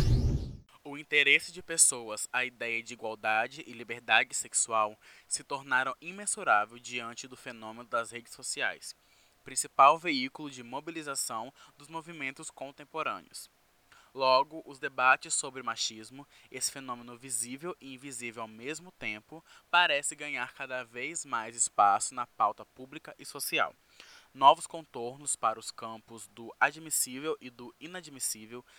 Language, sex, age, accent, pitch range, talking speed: Portuguese, male, 20-39, Brazilian, 120-145 Hz, 125 wpm